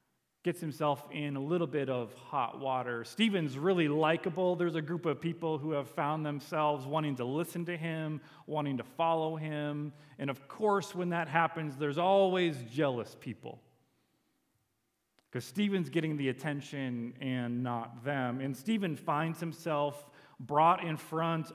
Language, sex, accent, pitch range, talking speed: English, male, American, 135-165 Hz, 155 wpm